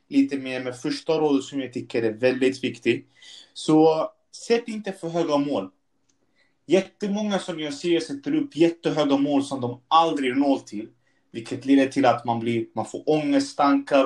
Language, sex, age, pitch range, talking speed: Swedish, male, 20-39, 110-140 Hz, 165 wpm